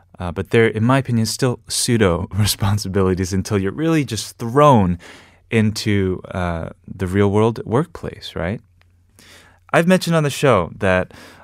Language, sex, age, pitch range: Korean, male, 20-39, 90-120 Hz